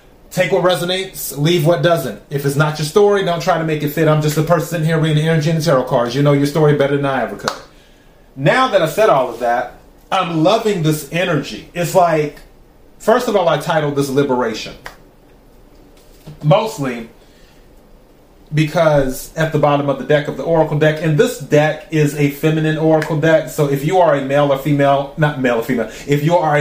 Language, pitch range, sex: English, 140-165 Hz, male